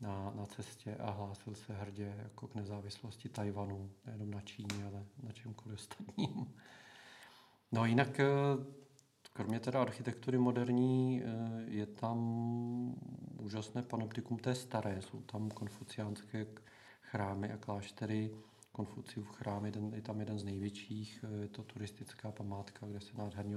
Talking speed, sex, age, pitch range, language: 135 wpm, male, 40-59, 105-115 Hz, Czech